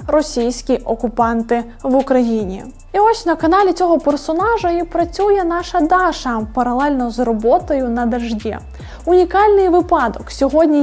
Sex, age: female, 20-39